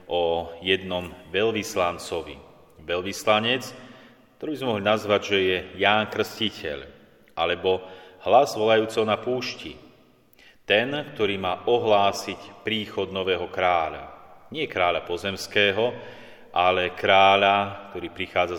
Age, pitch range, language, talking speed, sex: 30-49, 90-110 Hz, Slovak, 100 wpm, male